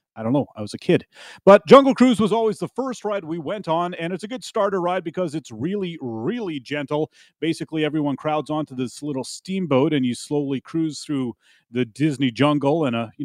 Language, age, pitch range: English, 30-49, 130-180 Hz